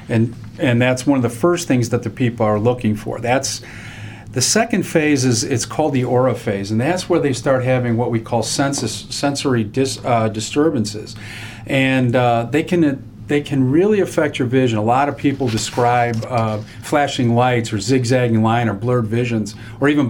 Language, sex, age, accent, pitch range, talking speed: English, male, 40-59, American, 115-140 Hz, 195 wpm